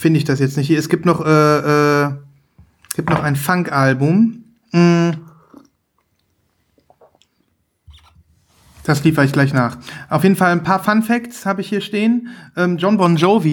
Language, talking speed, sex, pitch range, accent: German, 160 wpm, male, 150-190 Hz, German